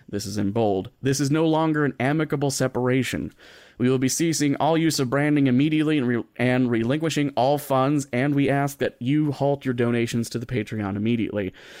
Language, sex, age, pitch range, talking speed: English, male, 30-49, 110-145 Hz, 190 wpm